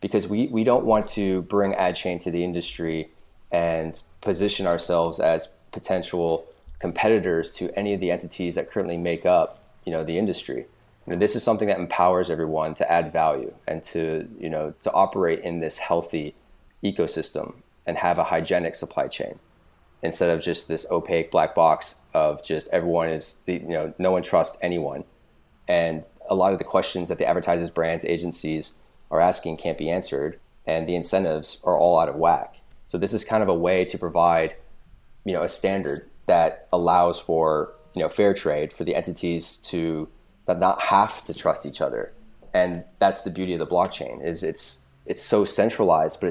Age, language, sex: 20-39, English, male